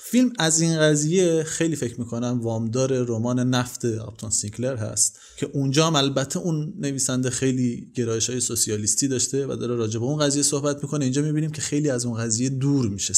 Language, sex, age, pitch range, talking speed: Persian, male, 30-49, 125-165 Hz, 185 wpm